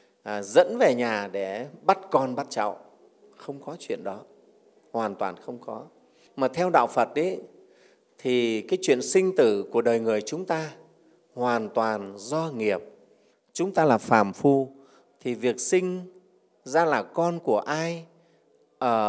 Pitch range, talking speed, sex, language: 110-175 Hz, 155 wpm, male, Vietnamese